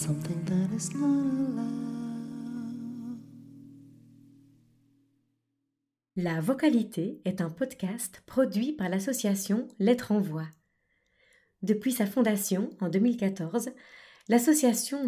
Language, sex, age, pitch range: French, female, 30-49, 185-235 Hz